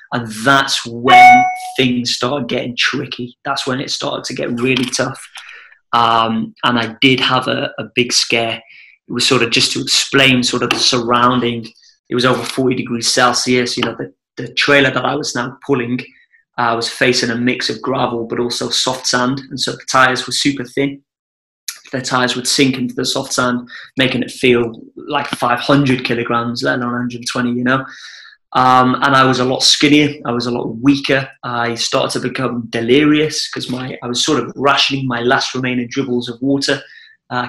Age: 20-39